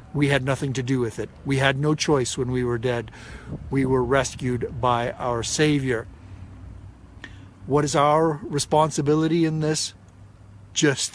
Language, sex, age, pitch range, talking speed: English, male, 50-69, 120-145 Hz, 150 wpm